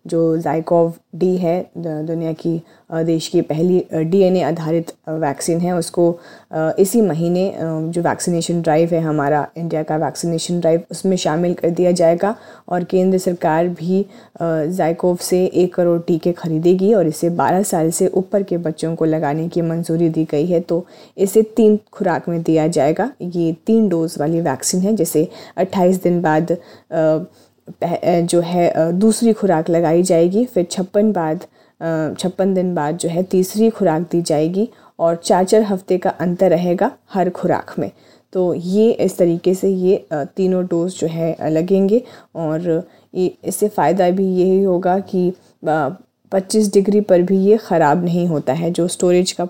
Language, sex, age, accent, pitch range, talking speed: Hindi, female, 30-49, native, 165-190 Hz, 160 wpm